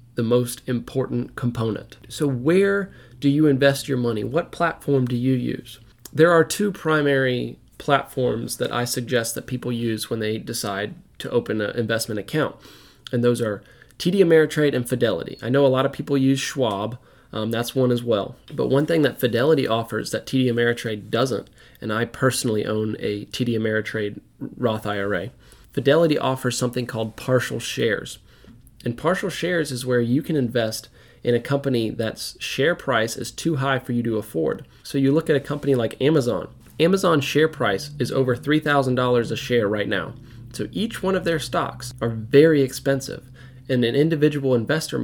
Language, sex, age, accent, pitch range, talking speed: English, male, 20-39, American, 115-140 Hz, 175 wpm